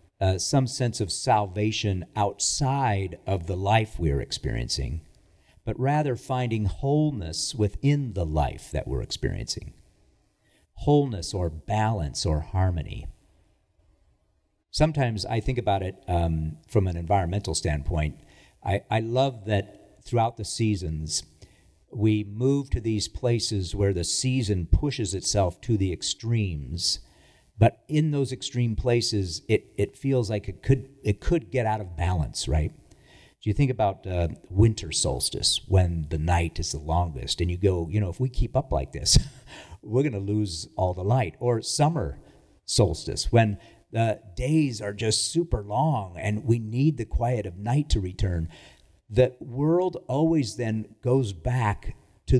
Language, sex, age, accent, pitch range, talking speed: English, male, 50-69, American, 90-125 Hz, 150 wpm